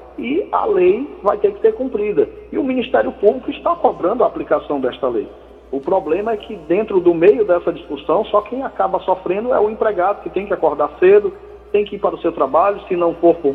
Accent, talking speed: Brazilian, 220 wpm